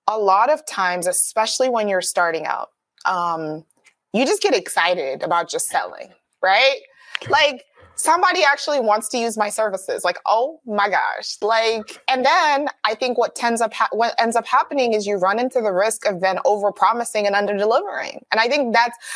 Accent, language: American, English